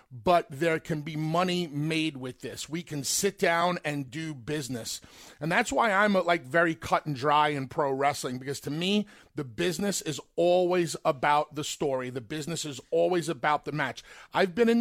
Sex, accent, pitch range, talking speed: male, American, 150-185 Hz, 195 wpm